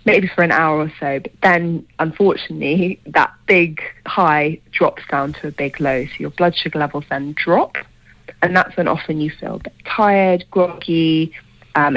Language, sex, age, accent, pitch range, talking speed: English, female, 20-39, British, 150-175 Hz, 180 wpm